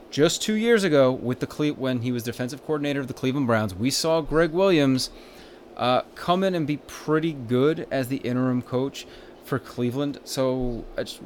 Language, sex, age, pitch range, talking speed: English, male, 30-49, 115-150 Hz, 185 wpm